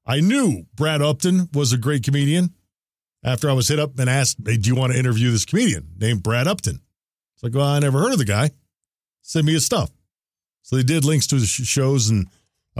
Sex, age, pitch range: male, 40-59, 110-150 Hz